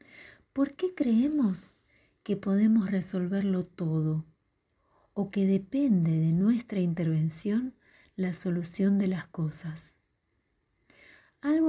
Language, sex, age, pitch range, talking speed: Spanish, female, 40-59, 175-220 Hz, 100 wpm